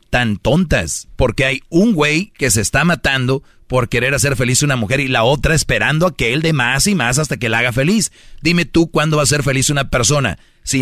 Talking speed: 240 wpm